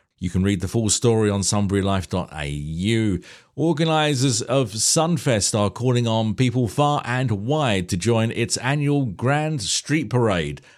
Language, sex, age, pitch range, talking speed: English, male, 50-69, 100-135 Hz, 140 wpm